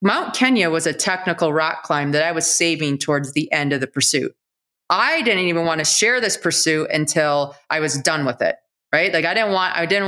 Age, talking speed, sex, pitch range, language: 20-39, 225 wpm, female, 150-185 Hz, English